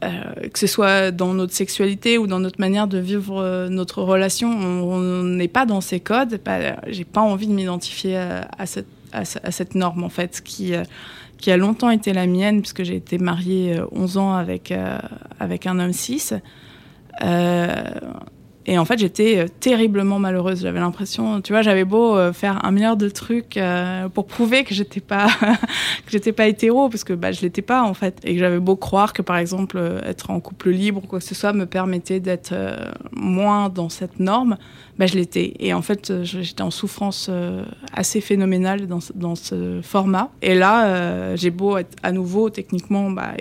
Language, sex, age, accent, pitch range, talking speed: French, female, 20-39, French, 180-205 Hz, 190 wpm